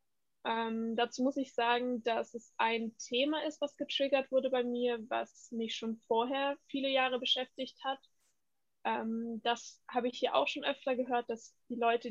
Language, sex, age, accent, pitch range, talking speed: German, female, 20-39, German, 230-255 Hz, 175 wpm